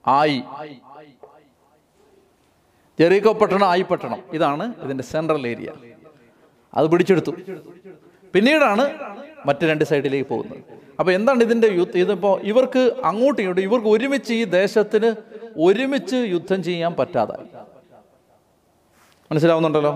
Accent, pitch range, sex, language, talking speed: native, 150-200 Hz, male, Malayalam, 95 wpm